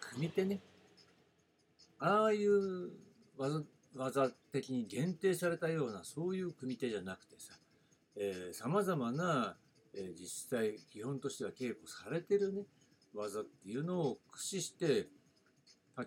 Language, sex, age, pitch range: Japanese, male, 60-79, 125-195 Hz